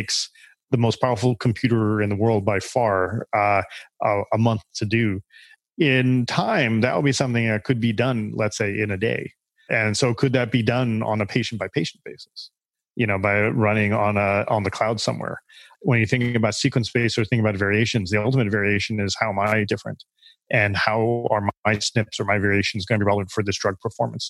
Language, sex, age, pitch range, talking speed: English, male, 30-49, 110-140 Hz, 210 wpm